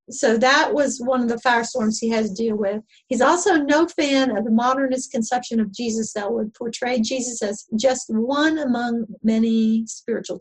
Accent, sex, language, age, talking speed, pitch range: American, female, English, 50-69, 185 wpm, 215-260 Hz